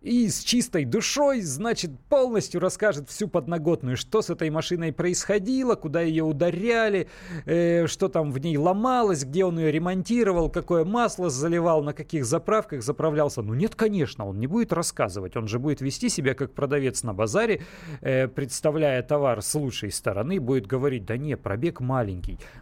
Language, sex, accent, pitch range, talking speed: Russian, male, native, 135-190 Hz, 165 wpm